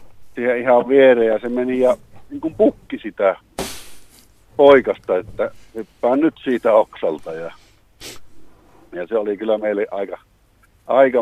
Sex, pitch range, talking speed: male, 110-140 Hz, 135 wpm